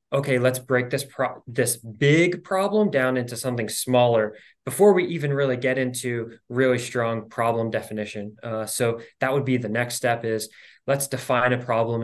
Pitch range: 115-135 Hz